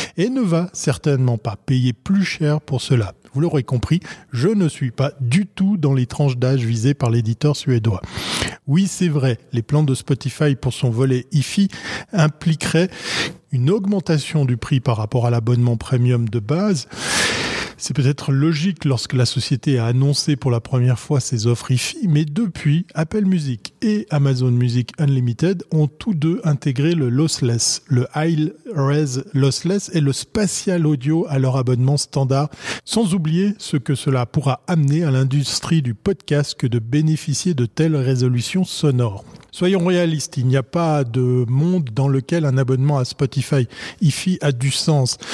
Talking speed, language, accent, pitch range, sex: 170 wpm, French, French, 130-160 Hz, male